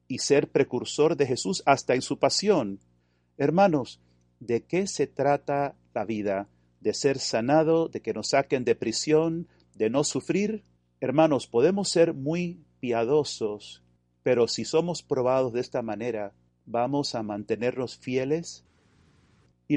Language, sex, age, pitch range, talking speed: Spanish, male, 40-59, 95-155 Hz, 135 wpm